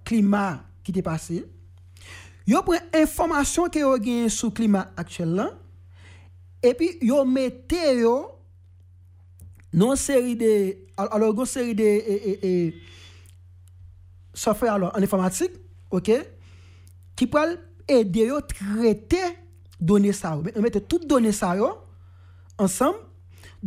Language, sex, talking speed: French, male, 140 wpm